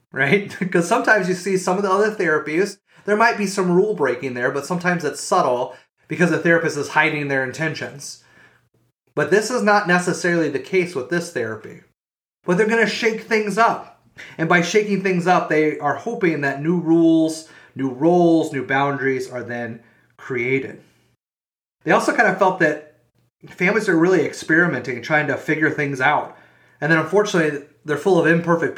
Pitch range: 135-175 Hz